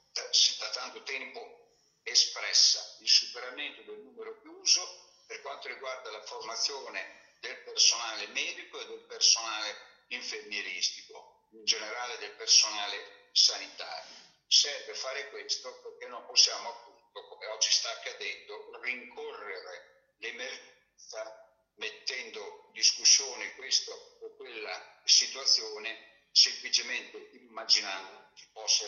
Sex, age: male, 60-79